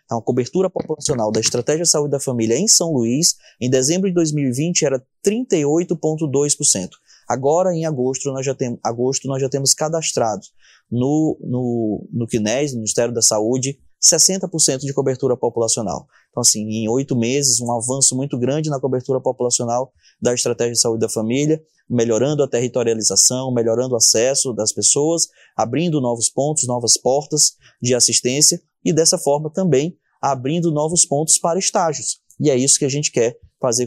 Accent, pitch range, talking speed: Brazilian, 120-145 Hz, 155 wpm